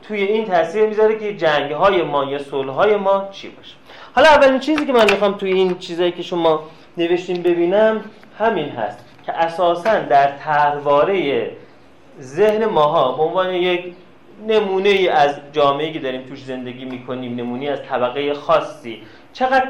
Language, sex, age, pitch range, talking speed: Persian, male, 30-49, 140-205 Hz, 150 wpm